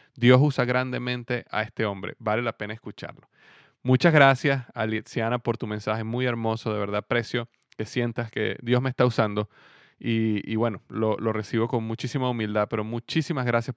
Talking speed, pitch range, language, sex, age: 175 wpm, 110-125 Hz, Spanish, male, 20-39